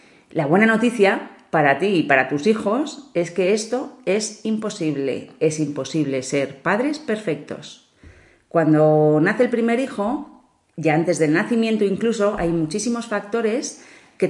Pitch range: 155-215 Hz